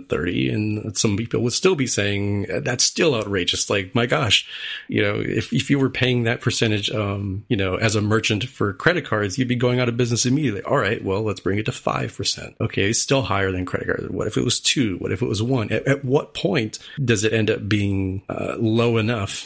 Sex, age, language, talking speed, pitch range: male, 30-49, English, 235 wpm, 95-120 Hz